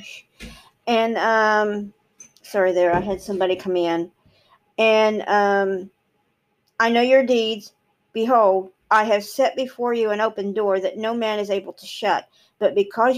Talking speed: 150 wpm